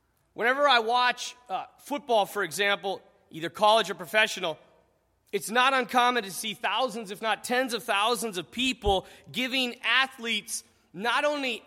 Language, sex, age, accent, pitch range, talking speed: English, male, 30-49, American, 205-280 Hz, 145 wpm